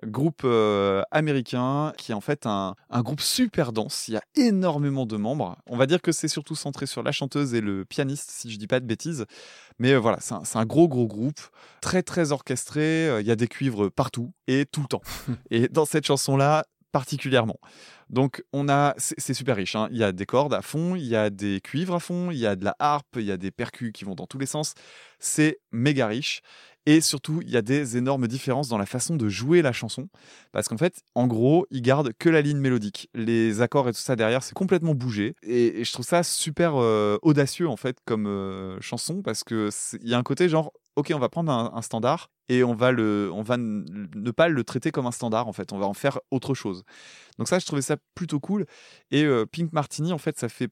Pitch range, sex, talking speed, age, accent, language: 110-150 Hz, male, 245 wpm, 20-39, French, French